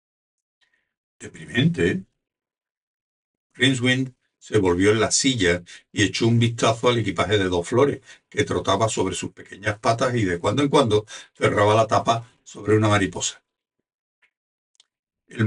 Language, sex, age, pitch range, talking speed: Spanish, male, 60-79, 105-135 Hz, 130 wpm